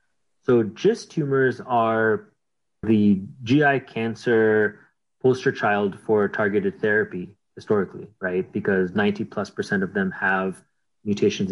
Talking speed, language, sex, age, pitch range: 115 wpm, English, male, 30-49, 105-155 Hz